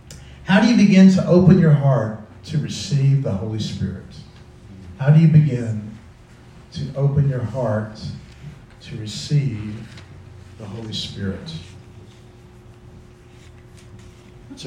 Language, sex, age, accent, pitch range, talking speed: English, male, 50-69, American, 115-150 Hz, 110 wpm